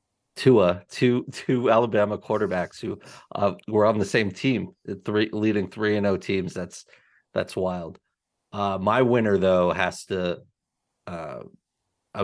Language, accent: English, American